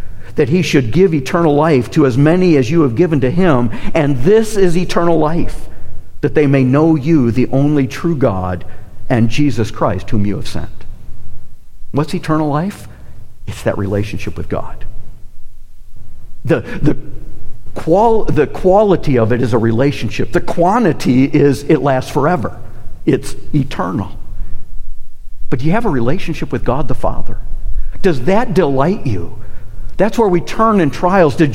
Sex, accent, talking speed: male, American, 155 wpm